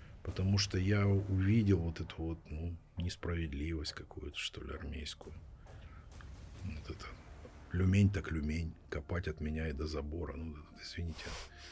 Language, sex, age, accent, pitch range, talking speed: Ukrainian, male, 50-69, native, 80-105 Hz, 135 wpm